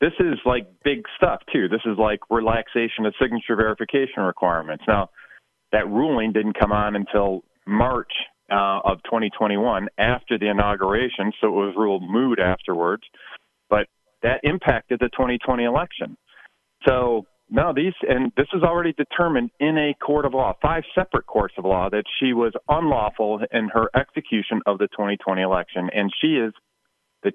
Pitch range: 105-130 Hz